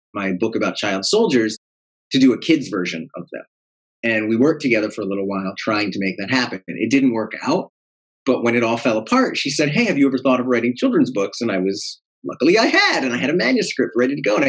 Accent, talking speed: American, 255 wpm